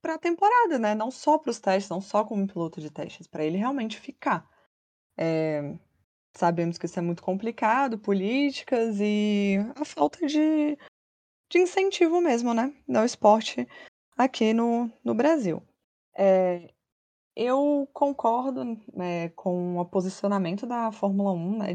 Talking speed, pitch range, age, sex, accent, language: 145 wpm, 170-225 Hz, 20-39, female, Brazilian, Portuguese